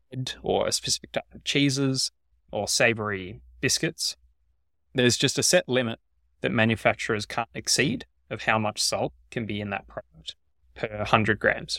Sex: male